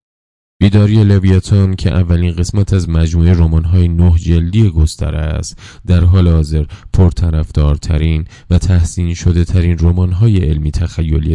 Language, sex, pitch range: Persian, male, 80-95 Hz